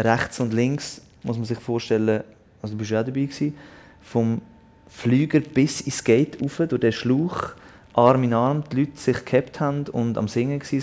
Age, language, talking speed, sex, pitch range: 30-49, German, 195 wpm, male, 100-120 Hz